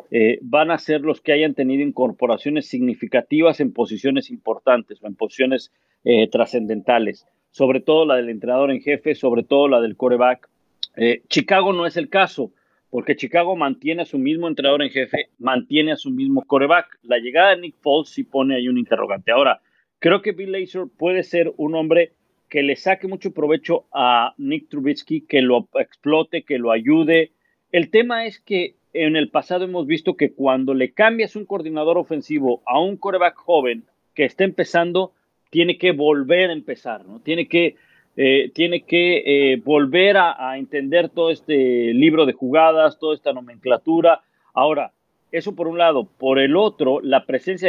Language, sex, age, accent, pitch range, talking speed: Spanish, male, 50-69, Mexican, 135-175 Hz, 175 wpm